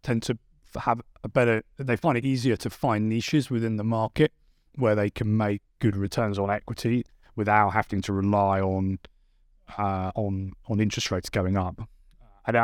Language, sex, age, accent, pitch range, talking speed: English, male, 30-49, British, 95-110 Hz, 170 wpm